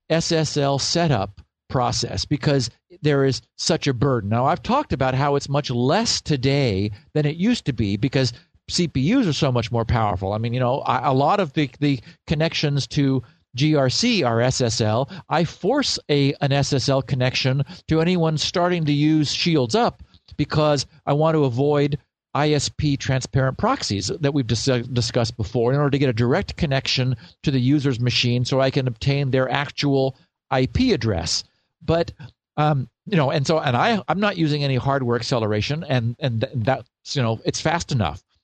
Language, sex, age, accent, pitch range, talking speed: English, male, 50-69, American, 125-155 Hz, 175 wpm